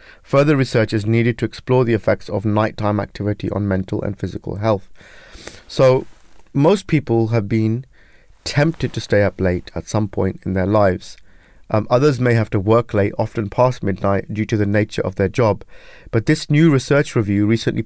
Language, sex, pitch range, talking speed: English, male, 100-120 Hz, 185 wpm